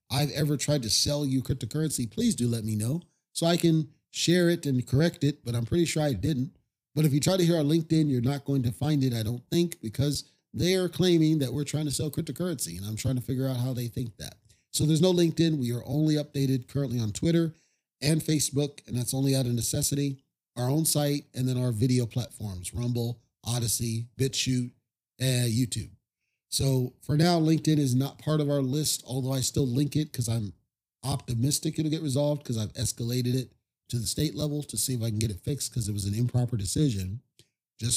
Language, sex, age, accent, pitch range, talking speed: English, male, 40-59, American, 120-150 Hz, 220 wpm